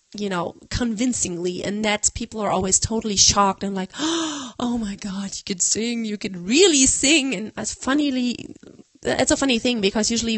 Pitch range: 200-240 Hz